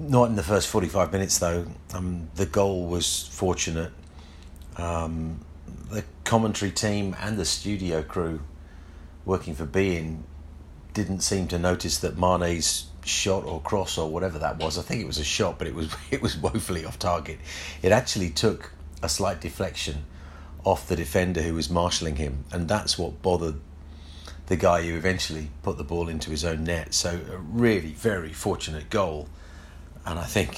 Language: English